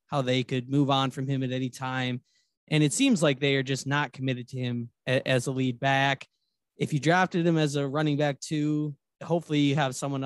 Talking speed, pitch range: 220 wpm, 130-150 Hz